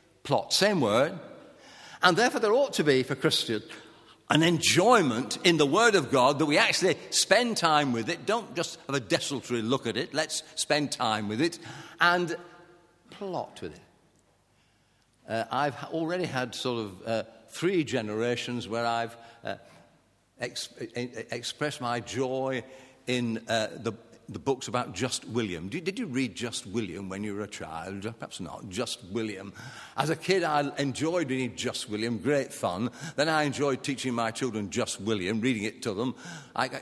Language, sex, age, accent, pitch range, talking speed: English, male, 50-69, British, 110-155 Hz, 165 wpm